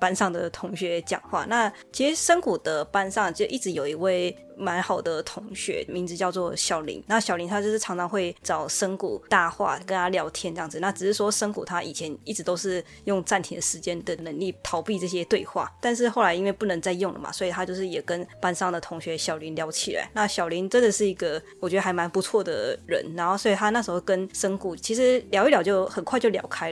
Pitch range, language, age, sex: 175-205 Hz, Chinese, 20-39, female